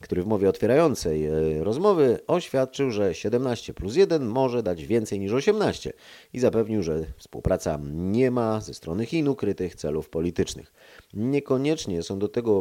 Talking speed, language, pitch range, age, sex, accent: 150 wpm, Polish, 85-115 Hz, 30-49, male, native